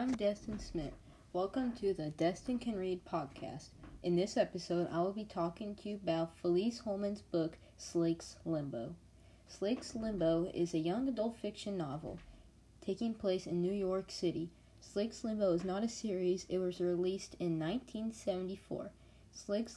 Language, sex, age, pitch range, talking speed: English, female, 20-39, 170-205 Hz, 155 wpm